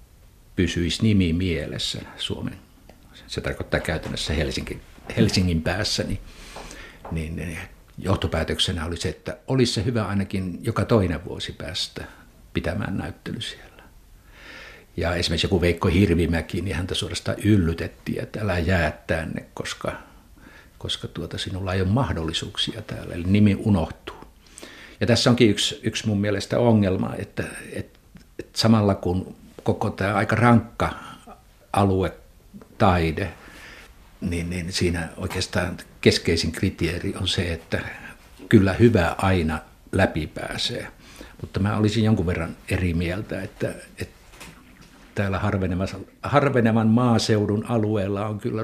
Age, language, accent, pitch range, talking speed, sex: 60-79, Finnish, native, 90-110 Hz, 120 wpm, male